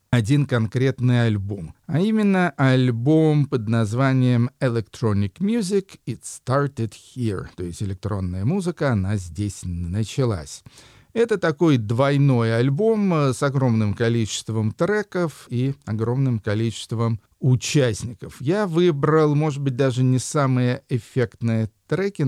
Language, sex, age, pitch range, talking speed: Russian, male, 40-59, 115-145 Hz, 110 wpm